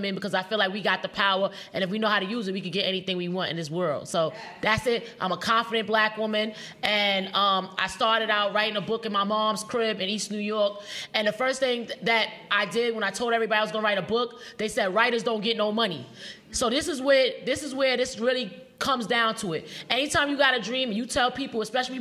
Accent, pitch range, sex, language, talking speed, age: American, 210-265 Hz, female, English, 265 wpm, 20-39